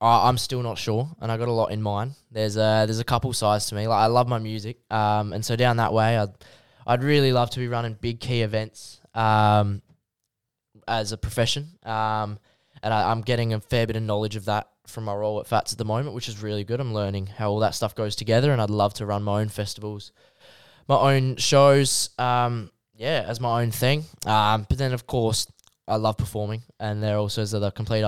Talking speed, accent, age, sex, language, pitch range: 230 wpm, Australian, 10-29, male, English, 105-120 Hz